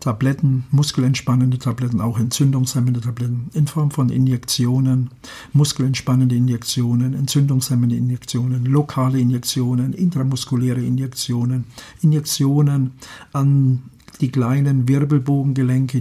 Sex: male